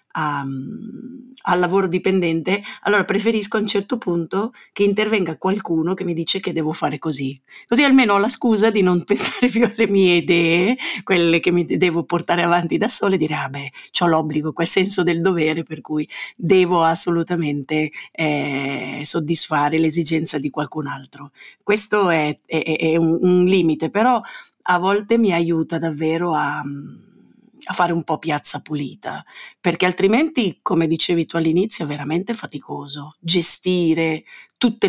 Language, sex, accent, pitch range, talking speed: Italian, female, native, 155-195 Hz, 155 wpm